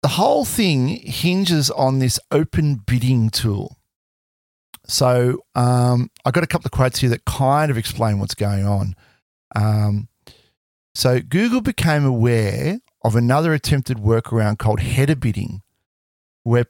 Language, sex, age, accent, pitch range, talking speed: English, male, 40-59, Australian, 105-140 Hz, 135 wpm